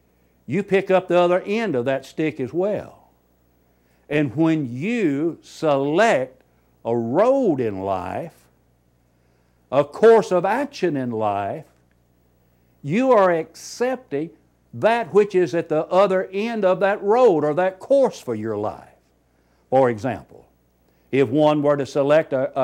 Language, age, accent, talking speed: English, 60-79, American, 140 wpm